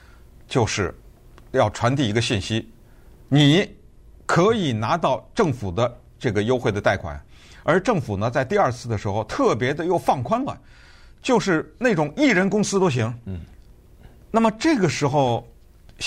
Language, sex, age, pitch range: Chinese, male, 50-69, 110-180 Hz